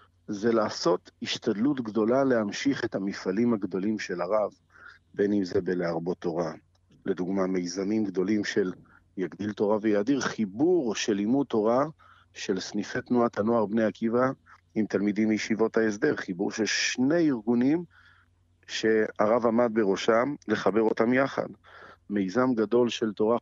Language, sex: Hebrew, male